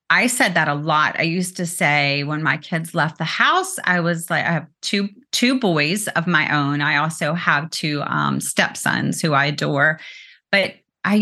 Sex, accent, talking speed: female, American, 200 wpm